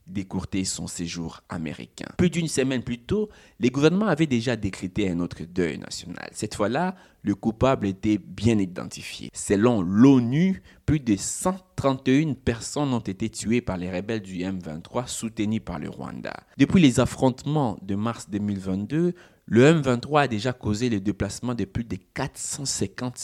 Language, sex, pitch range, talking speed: French, male, 100-135 Hz, 155 wpm